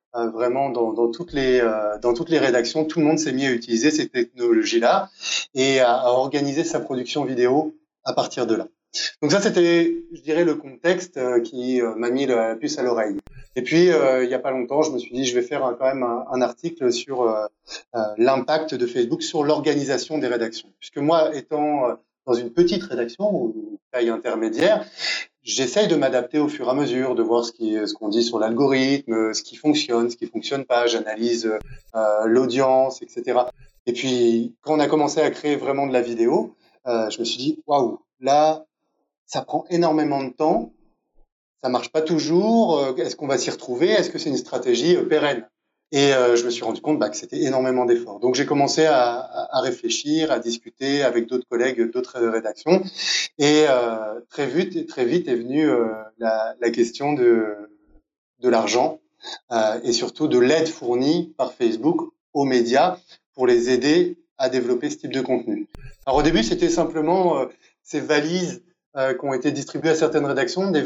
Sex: male